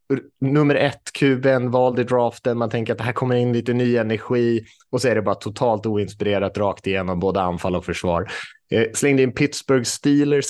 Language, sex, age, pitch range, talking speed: Swedish, male, 20-39, 110-140 Hz, 190 wpm